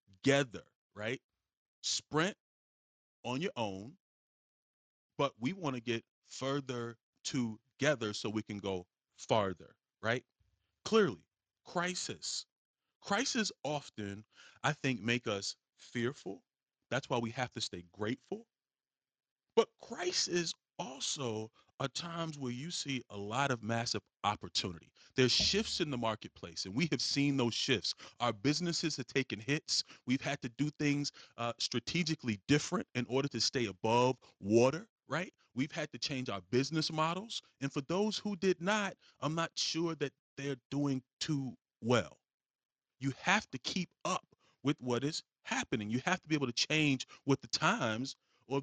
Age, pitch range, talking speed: 30-49, 115-155 Hz, 150 wpm